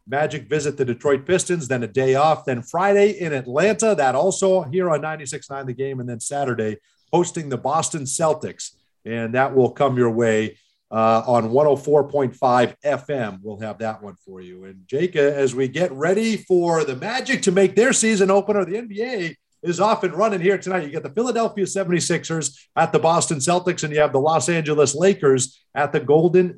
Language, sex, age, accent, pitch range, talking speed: English, male, 50-69, American, 135-180 Hz, 190 wpm